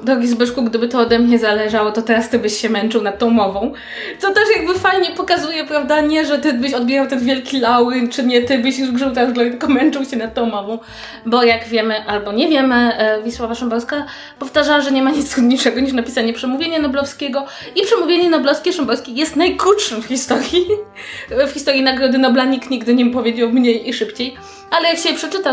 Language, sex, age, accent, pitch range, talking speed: Polish, female, 20-39, native, 230-290 Hz, 200 wpm